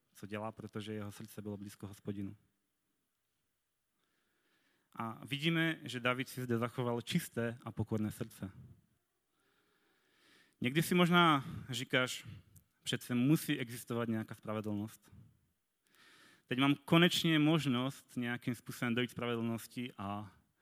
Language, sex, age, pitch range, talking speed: Czech, male, 30-49, 110-130 Hz, 110 wpm